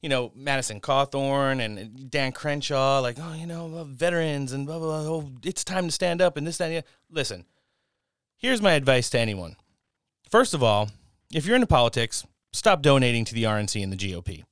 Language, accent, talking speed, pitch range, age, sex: English, American, 190 wpm, 115-155 Hz, 30-49, male